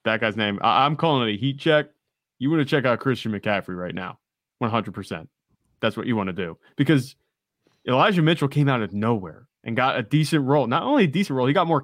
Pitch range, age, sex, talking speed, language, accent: 115-155 Hz, 20-39, male, 230 wpm, English, American